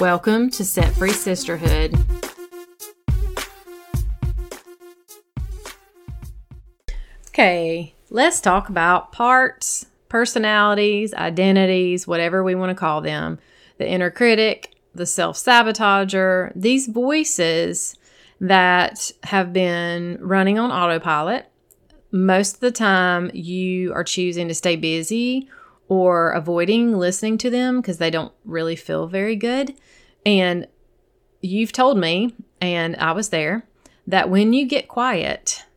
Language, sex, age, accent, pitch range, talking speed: English, female, 30-49, American, 175-220 Hz, 110 wpm